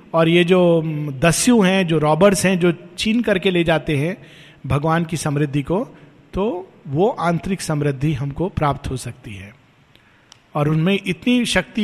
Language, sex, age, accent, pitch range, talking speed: Hindi, male, 50-69, native, 160-220 Hz, 155 wpm